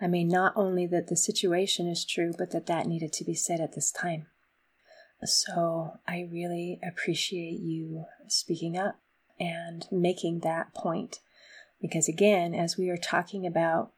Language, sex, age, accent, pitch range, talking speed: English, female, 30-49, American, 170-200 Hz, 160 wpm